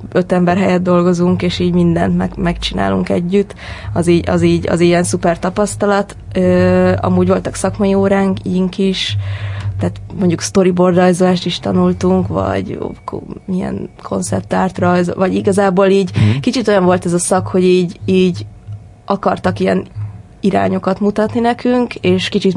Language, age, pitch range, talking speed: Hungarian, 20-39, 170-190 Hz, 145 wpm